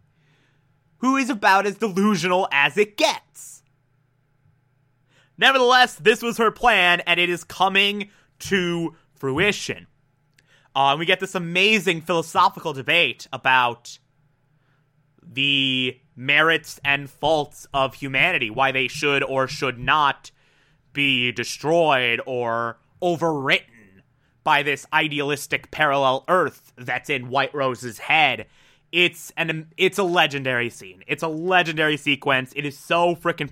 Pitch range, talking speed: 135-170 Hz, 120 wpm